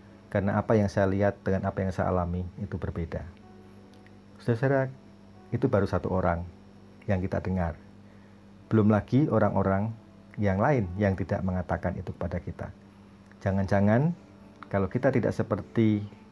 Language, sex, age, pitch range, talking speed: Indonesian, male, 40-59, 95-110 Hz, 130 wpm